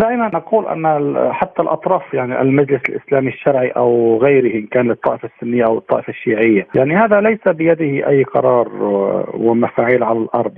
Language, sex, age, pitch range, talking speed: Arabic, male, 50-69, 120-160 Hz, 155 wpm